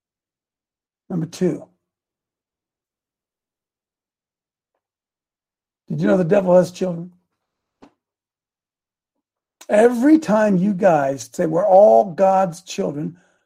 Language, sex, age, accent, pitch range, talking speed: English, male, 60-79, American, 185-285 Hz, 80 wpm